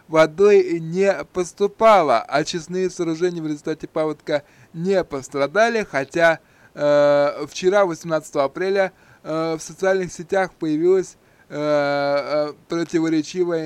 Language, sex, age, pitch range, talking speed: Russian, male, 20-39, 155-210 Hz, 95 wpm